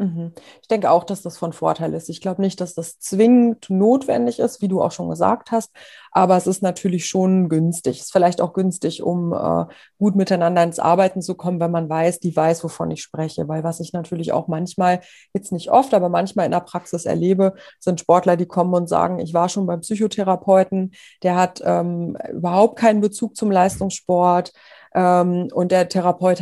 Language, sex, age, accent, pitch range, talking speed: German, female, 30-49, German, 165-195 Hz, 200 wpm